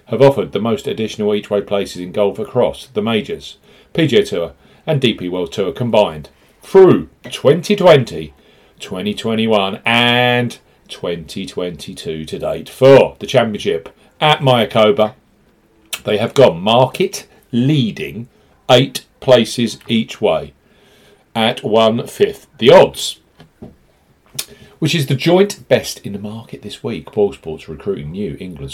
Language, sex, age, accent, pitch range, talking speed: English, male, 40-59, British, 100-145 Hz, 120 wpm